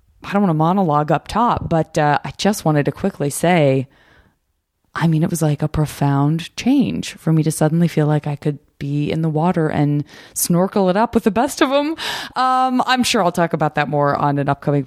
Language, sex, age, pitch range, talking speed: English, female, 20-39, 145-170 Hz, 220 wpm